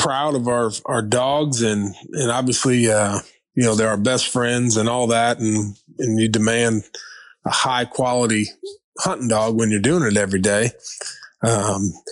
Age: 20-39